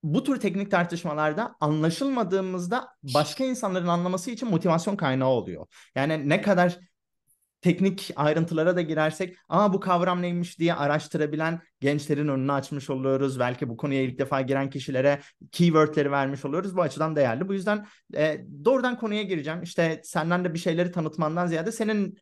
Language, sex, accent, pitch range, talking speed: Turkish, male, native, 135-180 Hz, 150 wpm